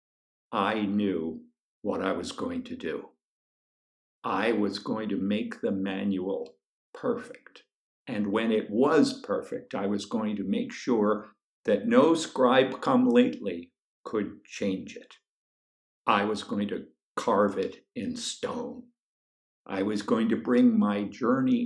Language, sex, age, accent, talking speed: English, male, 60-79, American, 140 wpm